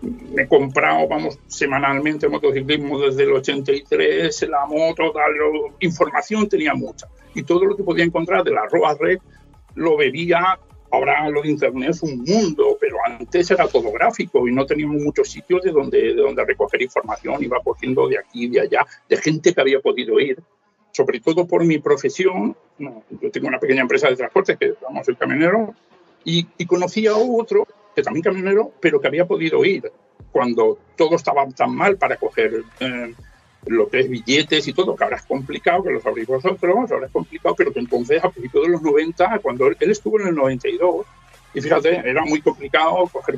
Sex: male